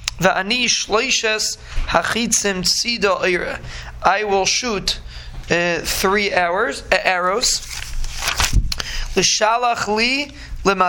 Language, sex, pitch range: English, male, 175-200 Hz